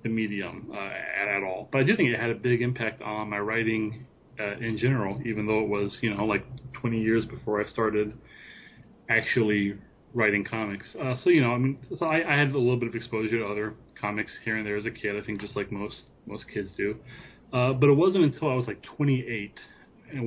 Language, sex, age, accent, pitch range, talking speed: English, male, 30-49, American, 110-125 Hz, 230 wpm